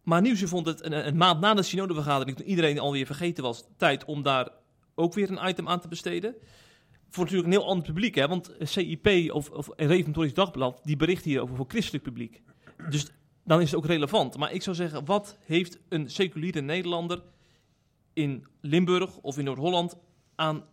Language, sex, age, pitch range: Dutch, male, 30-49, 135-175 Hz